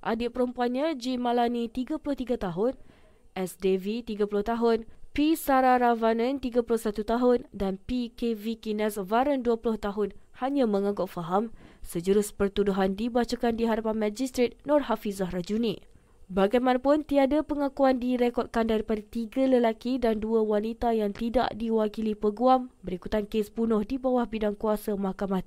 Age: 20-39